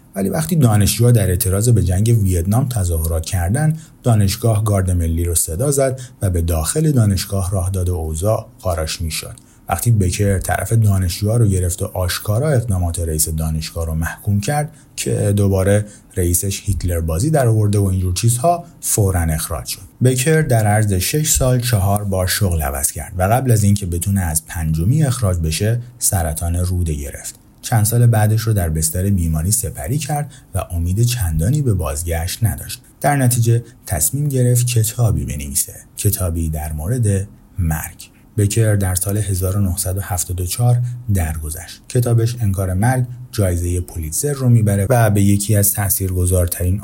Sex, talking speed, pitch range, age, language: male, 150 wpm, 90-120 Hz, 30-49, Persian